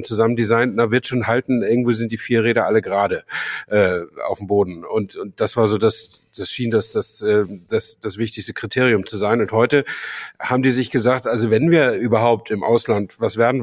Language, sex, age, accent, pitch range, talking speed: German, male, 50-69, German, 105-125 Hz, 205 wpm